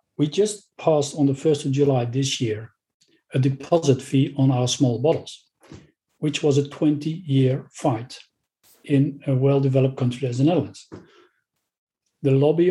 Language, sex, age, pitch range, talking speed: English, male, 40-59, 130-145 Hz, 150 wpm